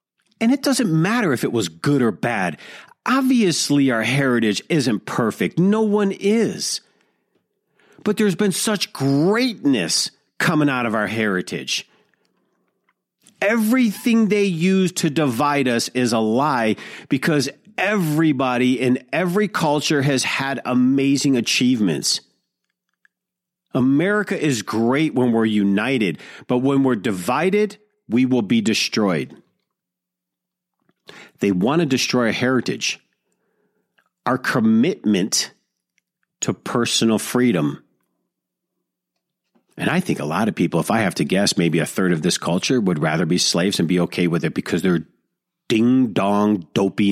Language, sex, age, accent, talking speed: English, male, 40-59, American, 130 wpm